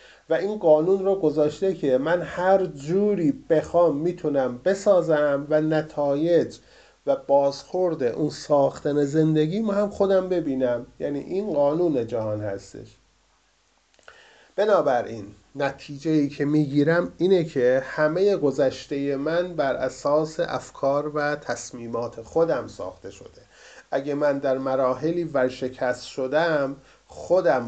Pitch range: 130-160 Hz